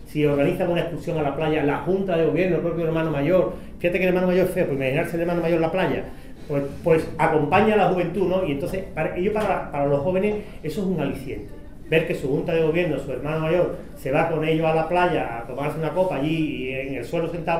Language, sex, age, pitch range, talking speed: Spanish, male, 40-59, 145-180 Hz, 255 wpm